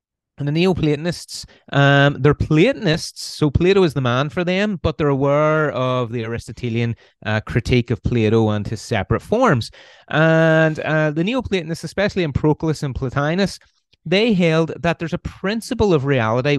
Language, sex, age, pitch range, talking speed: English, male, 30-49, 125-160 Hz, 155 wpm